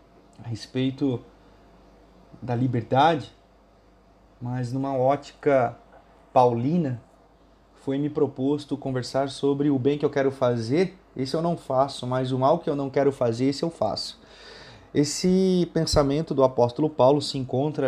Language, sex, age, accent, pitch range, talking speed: Portuguese, male, 30-49, Brazilian, 125-160 Hz, 140 wpm